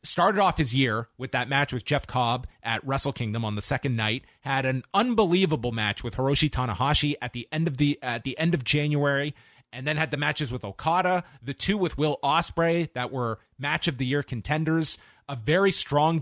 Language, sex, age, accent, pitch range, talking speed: English, male, 30-49, American, 125-155 Hz, 205 wpm